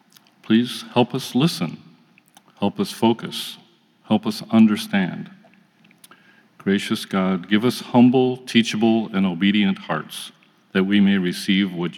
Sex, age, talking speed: male, 50-69, 120 wpm